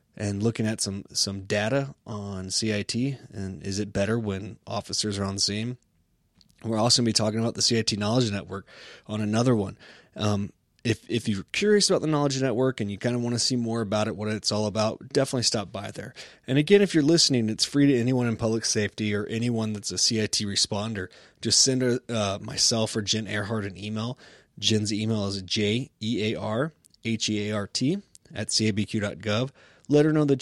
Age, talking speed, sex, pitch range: 20-39, 190 wpm, male, 105-120 Hz